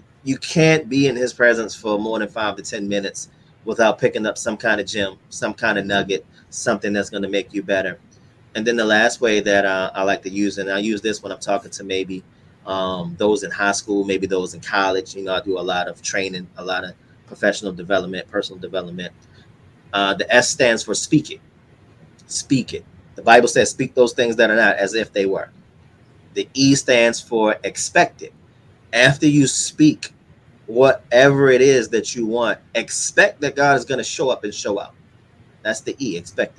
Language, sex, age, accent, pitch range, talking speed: English, male, 30-49, American, 100-135 Hz, 210 wpm